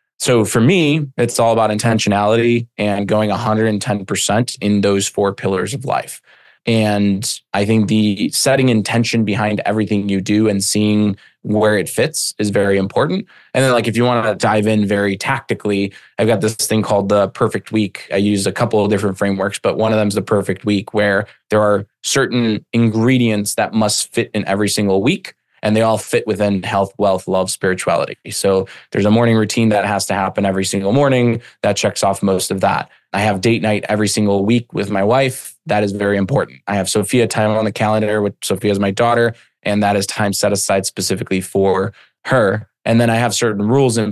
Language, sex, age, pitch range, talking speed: English, male, 20-39, 100-115 Hz, 205 wpm